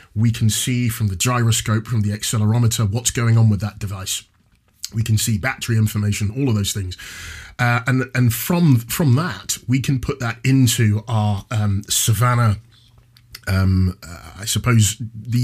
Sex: male